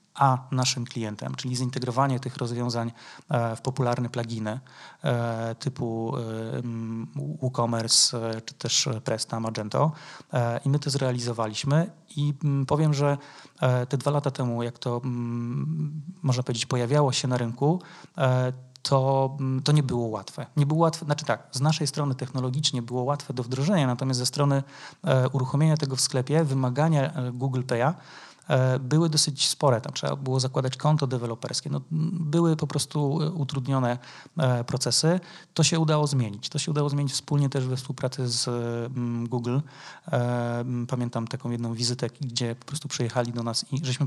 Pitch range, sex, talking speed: 120-145 Hz, male, 140 wpm